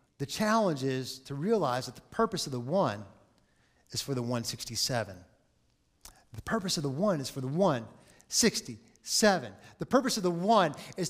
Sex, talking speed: male, 160 wpm